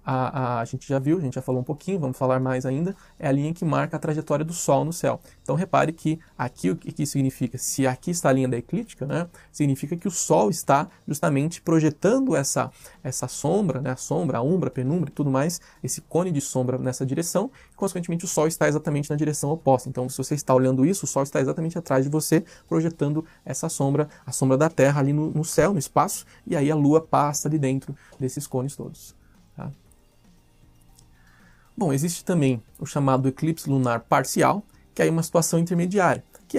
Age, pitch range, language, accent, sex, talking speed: 20-39, 135-170 Hz, Portuguese, Brazilian, male, 210 wpm